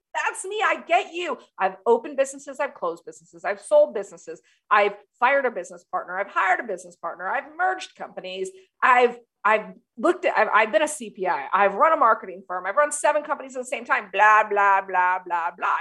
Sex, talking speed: female, 205 wpm